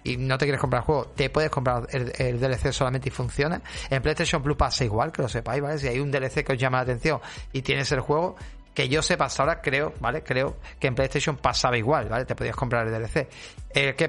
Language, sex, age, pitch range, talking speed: Spanish, male, 30-49, 130-160 Hz, 250 wpm